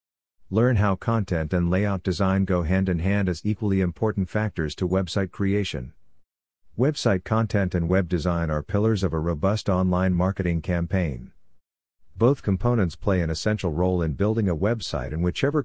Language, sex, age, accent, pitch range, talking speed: English, male, 50-69, American, 85-100 Hz, 155 wpm